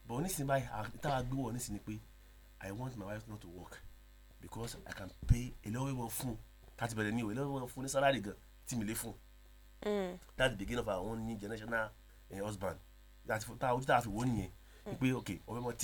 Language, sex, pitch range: English, male, 90-120 Hz